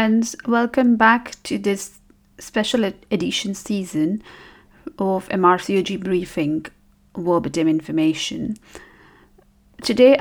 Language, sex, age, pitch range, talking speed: English, female, 40-59, 175-240 Hz, 90 wpm